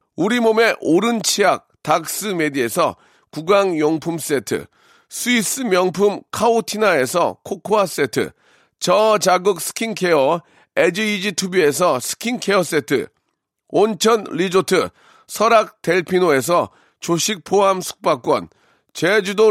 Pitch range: 175-220 Hz